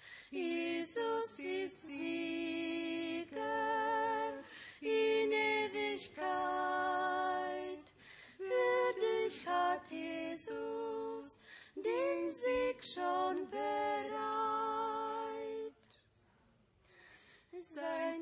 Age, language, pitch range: 20-39, Croatian, 215-350 Hz